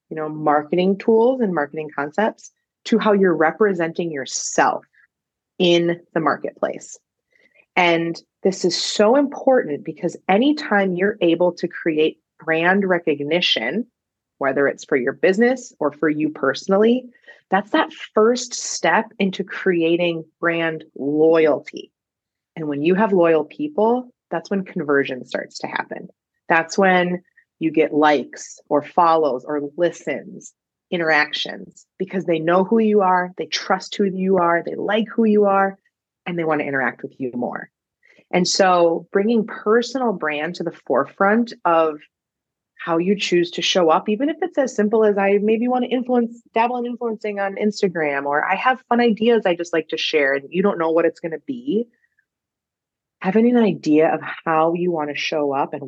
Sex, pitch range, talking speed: female, 160-220 Hz, 165 wpm